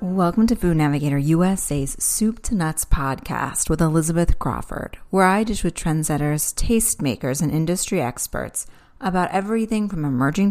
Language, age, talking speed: English, 30-49, 145 wpm